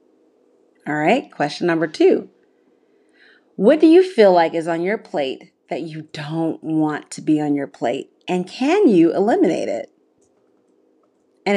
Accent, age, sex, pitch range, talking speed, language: American, 30-49, female, 180-300 Hz, 150 wpm, English